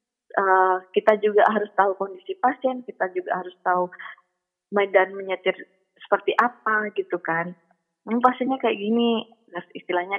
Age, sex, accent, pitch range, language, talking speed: 20-39, female, native, 185-240 Hz, Indonesian, 130 wpm